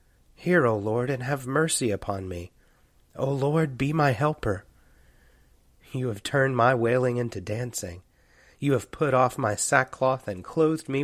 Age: 30-49